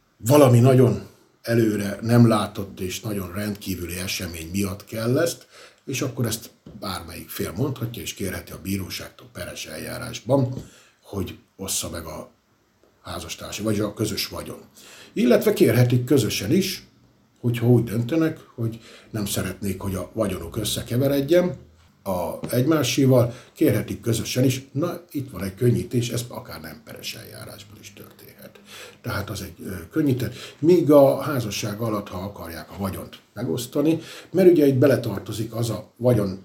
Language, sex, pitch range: Hungarian, male, 100-125 Hz